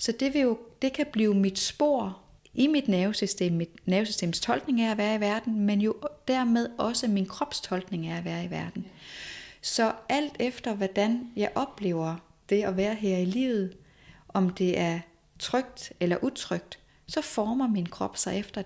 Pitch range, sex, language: 175-225 Hz, female, Danish